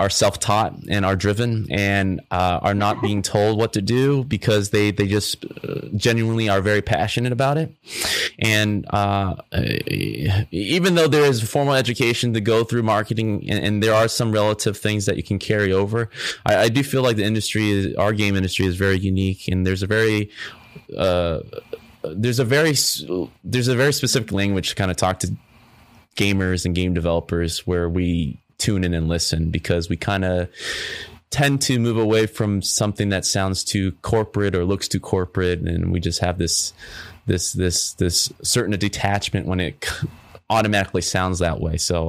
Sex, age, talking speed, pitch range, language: male, 20-39, 180 wpm, 95-110 Hz, English